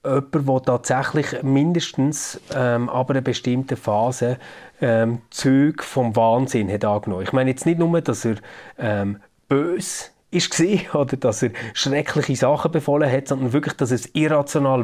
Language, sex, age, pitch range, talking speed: German, male, 30-49, 115-145 Hz, 150 wpm